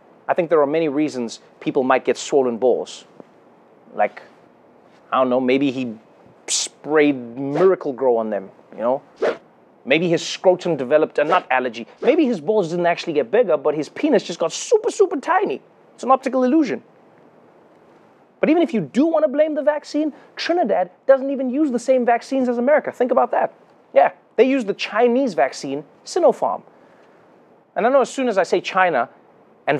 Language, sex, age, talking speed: English, male, 30-49, 175 wpm